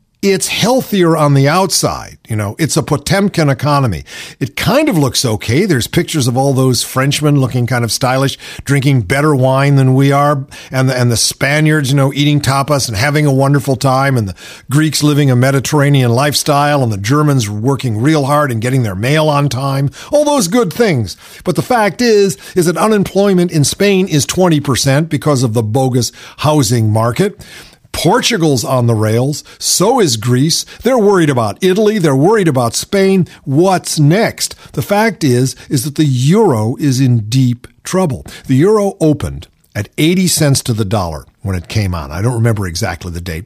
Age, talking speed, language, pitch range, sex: 50-69, 180 wpm, English, 125-160 Hz, male